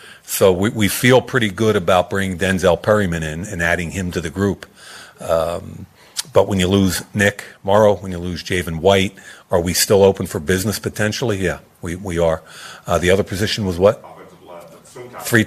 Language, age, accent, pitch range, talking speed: English, 50-69, American, 90-105 Hz, 180 wpm